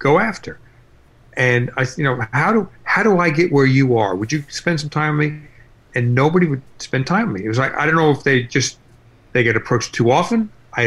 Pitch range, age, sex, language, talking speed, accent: 115-140 Hz, 40-59, male, English, 245 wpm, American